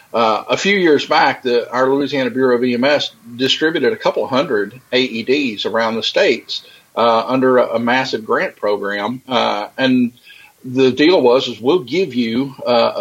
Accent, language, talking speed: American, English, 165 wpm